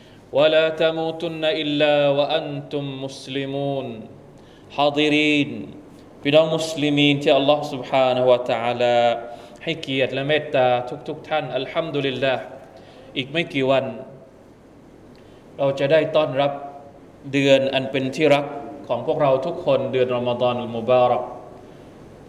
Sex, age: male, 20-39